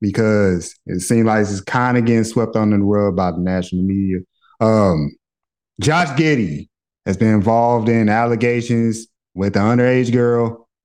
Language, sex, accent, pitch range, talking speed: English, male, American, 105-120 Hz, 155 wpm